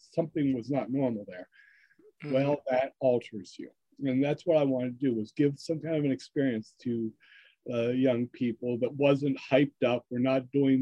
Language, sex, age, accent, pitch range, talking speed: English, male, 50-69, American, 125-145 Hz, 190 wpm